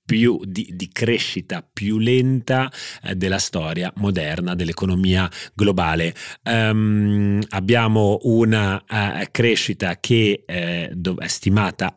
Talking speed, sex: 105 wpm, male